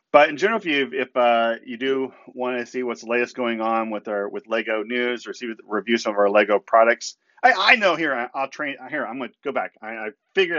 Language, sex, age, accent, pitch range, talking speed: English, male, 40-59, American, 105-125 Hz, 250 wpm